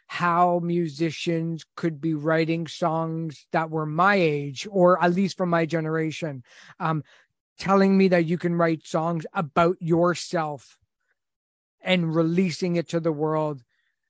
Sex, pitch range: male, 155-175 Hz